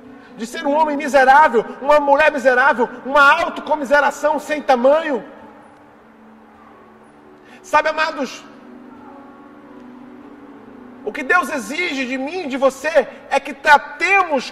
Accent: Brazilian